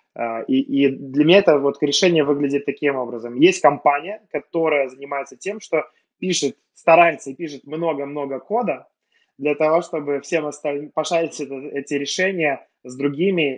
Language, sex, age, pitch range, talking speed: Russian, male, 20-39, 130-155 Hz, 145 wpm